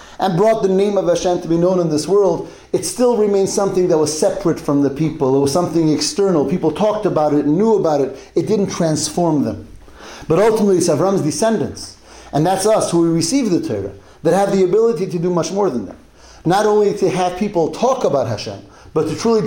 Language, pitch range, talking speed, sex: English, 145-195 Hz, 220 wpm, male